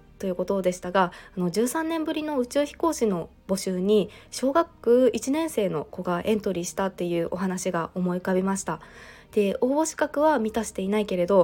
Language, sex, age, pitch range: Japanese, female, 20-39, 190-235 Hz